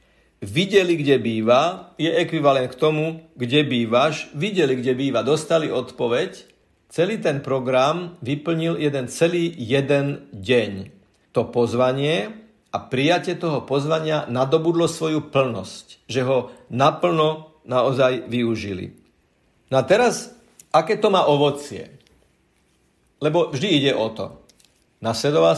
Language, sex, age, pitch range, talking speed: Slovak, male, 50-69, 120-160 Hz, 115 wpm